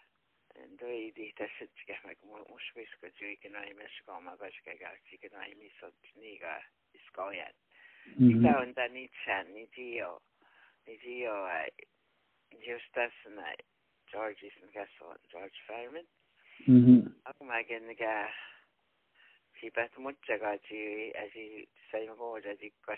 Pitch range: 110-125 Hz